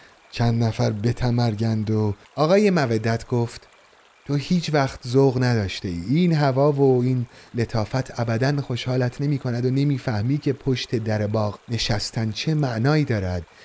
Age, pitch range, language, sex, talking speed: 30-49, 110-140 Hz, Persian, male, 135 wpm